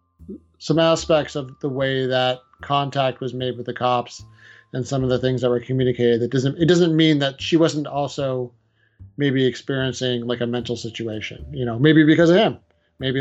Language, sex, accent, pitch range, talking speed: English, male, American, 120-145 Hz, 190 wpm